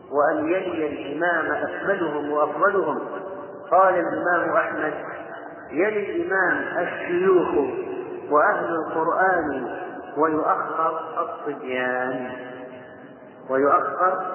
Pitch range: 140-175 Hz